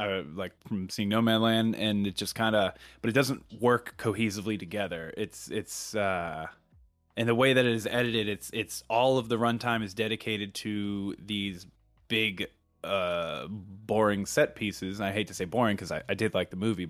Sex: male